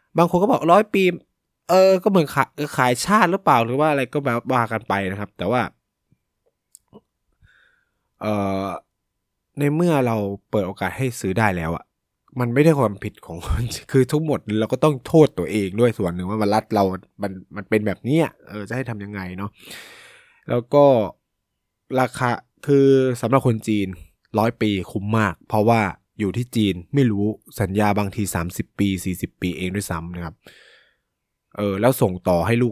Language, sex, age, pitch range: Thai, male, 20-39, 100-130 Hz